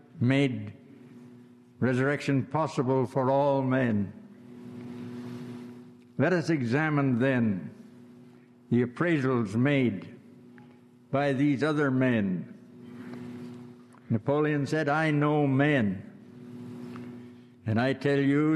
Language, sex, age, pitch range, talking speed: English, male, 60-79, 120-145 Hz, 85 wpm